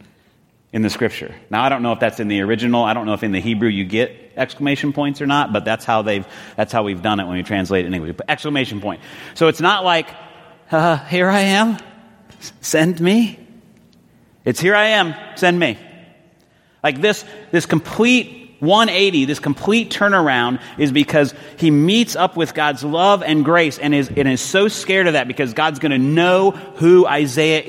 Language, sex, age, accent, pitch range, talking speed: English, male, 40-59, American, 115-185 Hz, 195 wpm